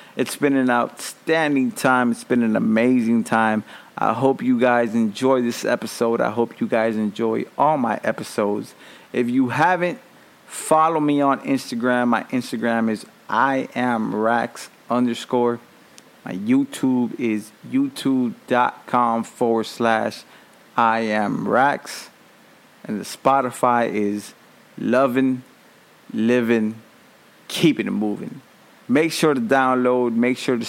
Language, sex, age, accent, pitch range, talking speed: English, male, 30-49, American, 115-135 Hz, 120 wpm